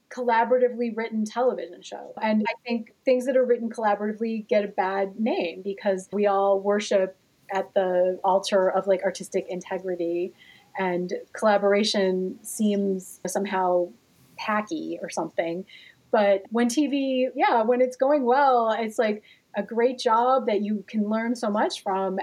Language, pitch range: English, 205-255 Hz